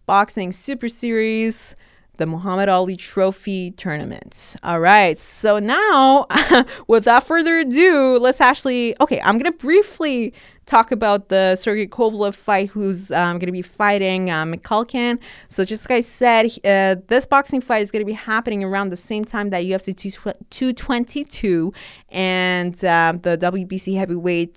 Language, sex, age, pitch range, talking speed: English, female, 20-39, 190-255 Hz, 150 wpm